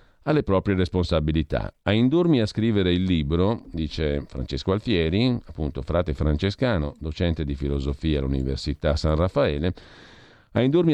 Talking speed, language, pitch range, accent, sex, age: 125 wpm, Italian, 80-115 Hz, native, male, 50-69